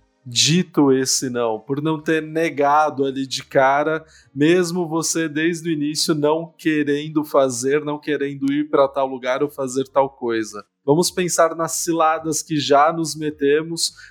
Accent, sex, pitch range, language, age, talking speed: Brazilian, male, 140-165 Hz, Portuguese, 20-39, 155 wpm